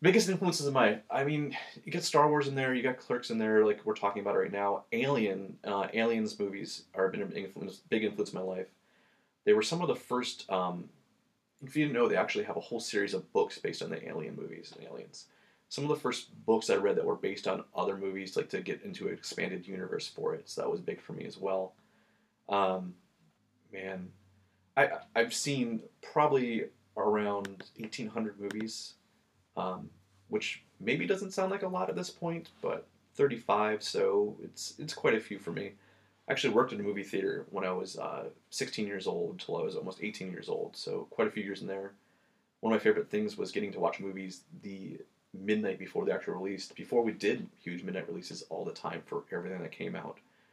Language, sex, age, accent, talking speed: English, male, 30-49, American, 215 wpm